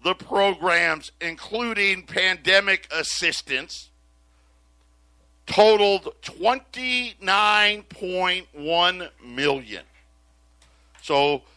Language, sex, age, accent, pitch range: English, male, 50-69, American, 140-195 Hz